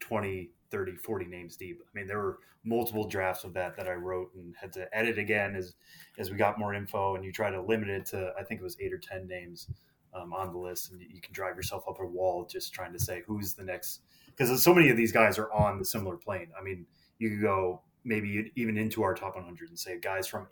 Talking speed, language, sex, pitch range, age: 255 wpm, English, male, 95-110 Hz, 20-39